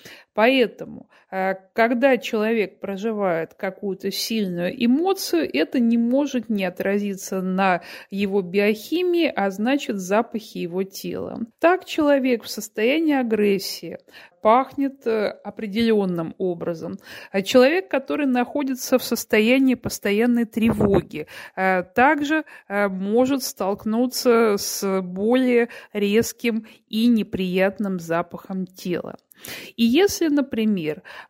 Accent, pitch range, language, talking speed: native, 195-255 Hz, Russian, 90 wpm